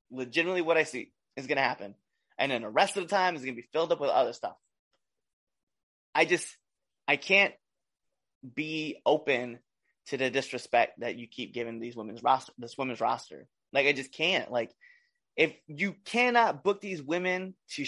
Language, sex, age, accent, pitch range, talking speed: English, male, 20-39, American, 135-190 Hz, 185 wpm